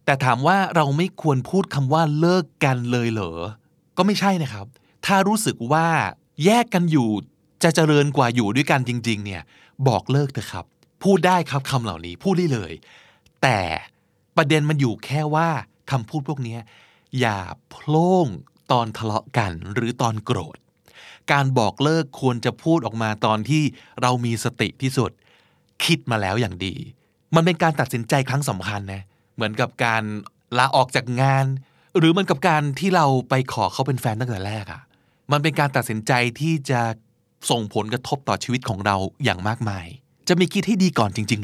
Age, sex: 20-39, male